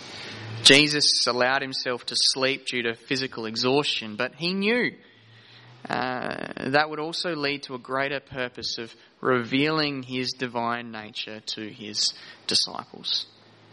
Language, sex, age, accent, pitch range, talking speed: English, male, 20-39, Australian, 120-155 Hz, 125 wpm